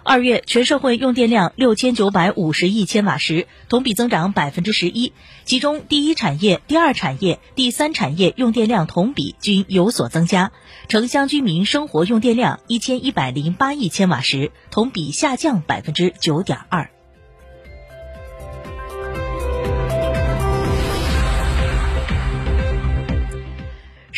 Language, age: Chinese, 30-49